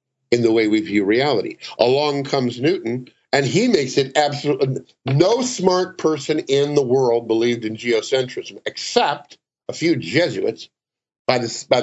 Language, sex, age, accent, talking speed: English, male, 50-69, American, 140 wpm